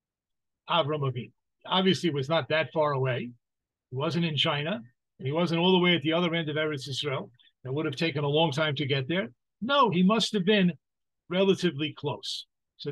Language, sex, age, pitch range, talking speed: English, male, 50-69, 140-175 Hz, 195 wpm